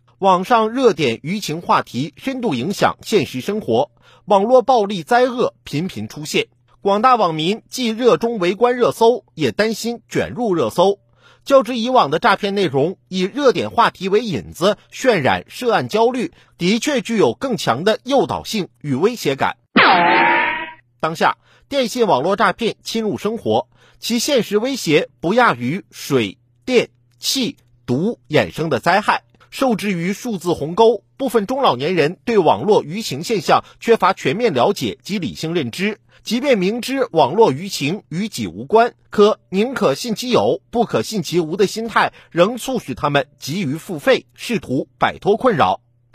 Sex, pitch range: male, 175-240 Hz